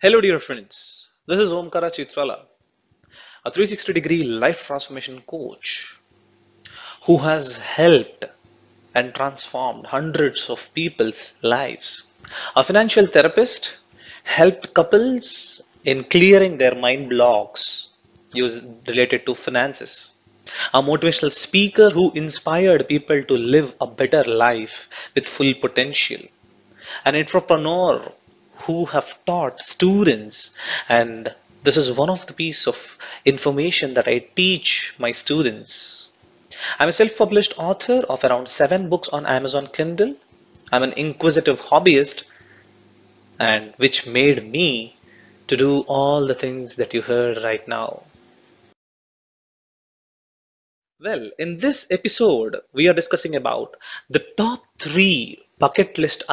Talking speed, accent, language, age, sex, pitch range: 120 wpm, Indian, English, 30-49, male, 125-185 Hz